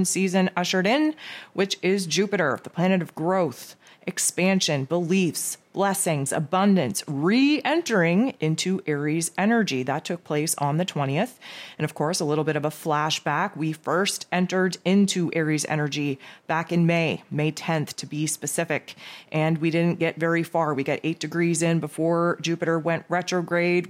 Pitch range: 155-190 Hz